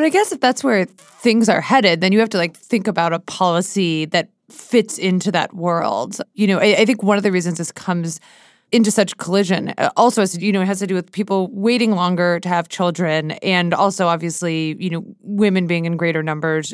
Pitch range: 165-200 Hz